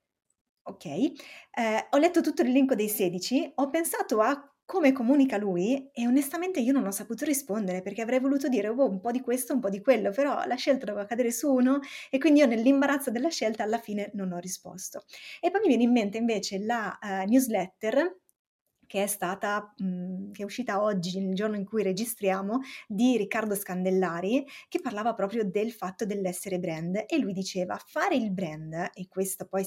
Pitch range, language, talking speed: 195-270 Hz, Italian, 190 wpm